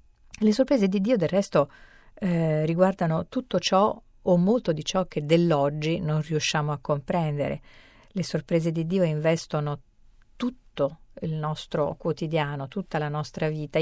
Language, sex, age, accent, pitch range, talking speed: Italian, female, 50-69, native, 155-200 Hz, 145 wpm